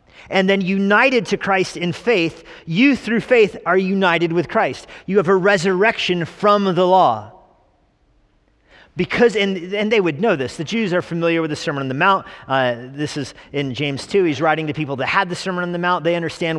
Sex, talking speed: male, 205 wpm